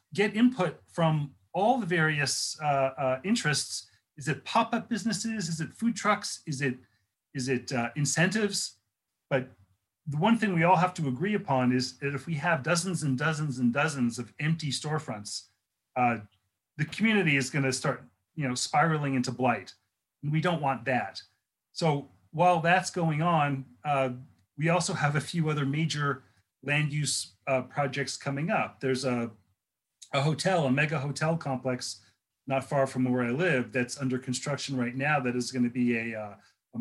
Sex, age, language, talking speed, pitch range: male, 40-59, English, 175 wpm, 120-155 Hz